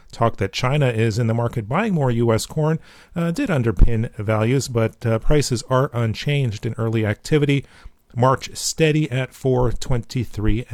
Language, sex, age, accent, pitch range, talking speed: English, male, 40-59, American, 110-140 Hz, 150 wpm